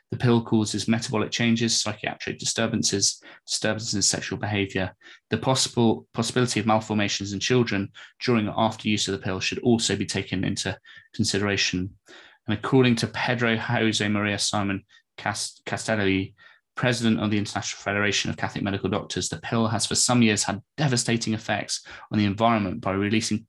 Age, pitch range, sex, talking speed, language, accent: 20-39, 100-115 Hz, male, 160 wpm, English, British